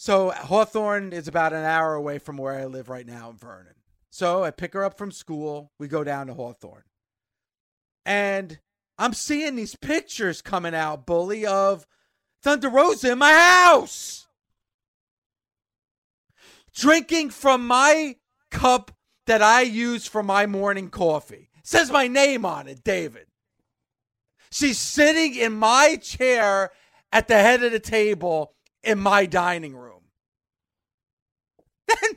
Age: 40-59